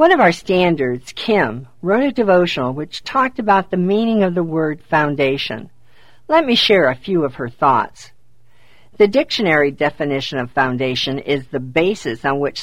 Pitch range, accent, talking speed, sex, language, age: 130-195 Hz, American, 165 wpm, female, English, 50-69